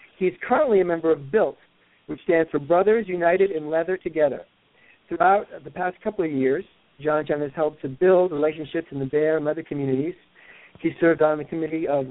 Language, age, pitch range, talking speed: English, 50-69, 150-185 Hz, 195 wpm